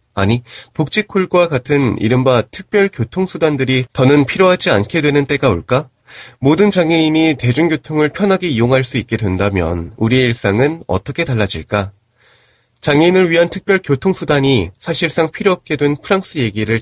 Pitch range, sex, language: 115-170 Hz, male, Korean